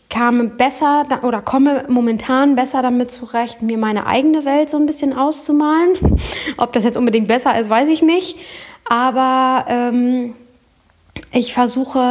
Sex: female